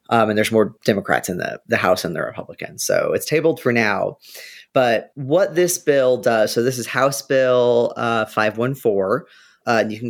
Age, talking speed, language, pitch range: 30-49, 195 wpm, English, 115-145 Hz